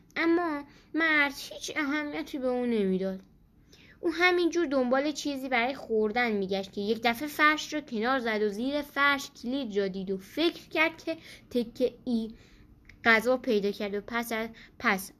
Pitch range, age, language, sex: 225-305 Hz, 10-29, Persian, female